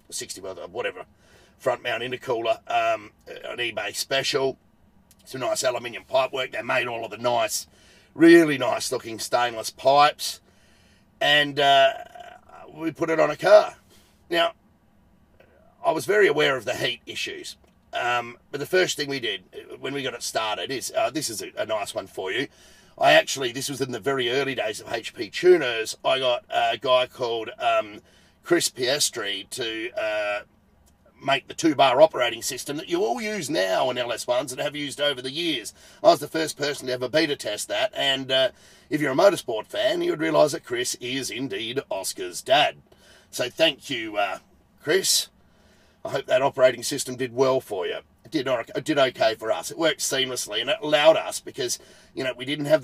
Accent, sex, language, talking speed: Australian, male, English, 185 wpm